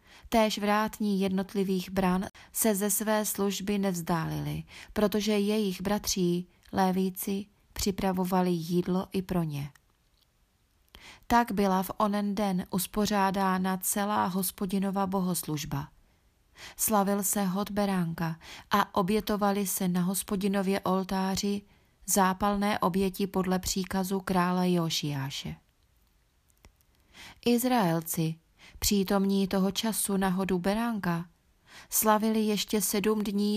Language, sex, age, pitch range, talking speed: Czech, female, 30-49, 185-205 Hz, 95 wpm